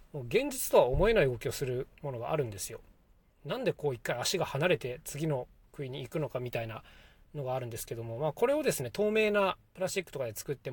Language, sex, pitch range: Japanese, male, 130-175 Hz